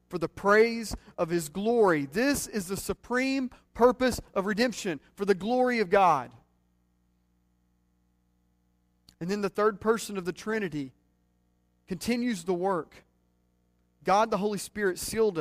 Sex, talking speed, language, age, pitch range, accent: male, 130 wpm, English, 40-59, 165-220 Hz, American